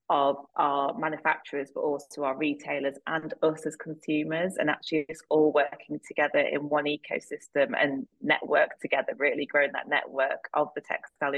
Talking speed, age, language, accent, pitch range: 160 wpm, 20-39, English, British, 140-155 Hz